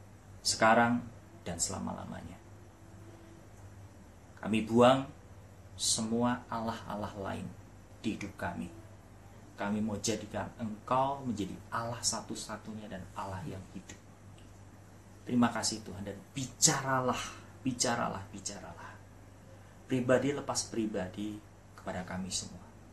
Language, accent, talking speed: Indonesian, native, 90 wpm